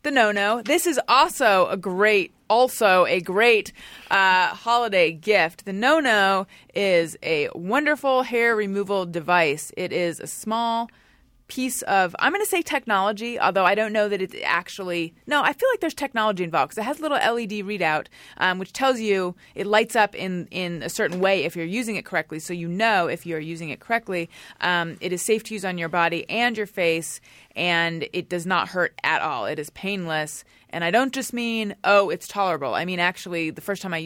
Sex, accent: female, American